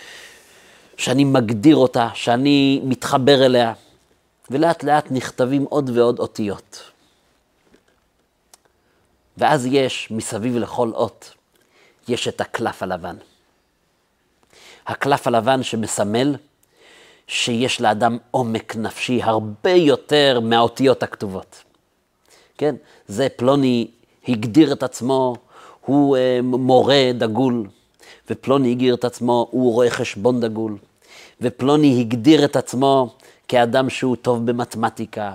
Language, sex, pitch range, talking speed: Hebrew, male, 120-140 Hz, 100 wpm